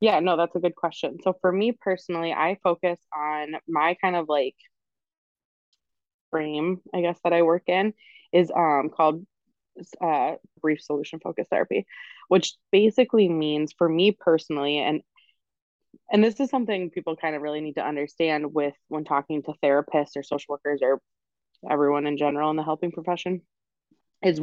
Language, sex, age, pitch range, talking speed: English, female, 20-39, 150-185 Hz, 165 wpm